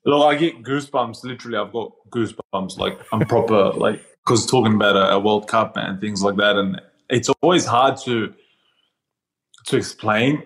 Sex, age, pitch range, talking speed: male, 20-39, 100-120 Hz, 165 wpm